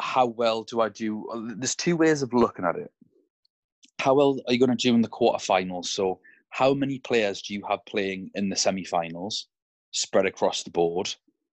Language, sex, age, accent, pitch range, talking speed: English, male, 20-39, British, 100-125 Hz, 195 wpm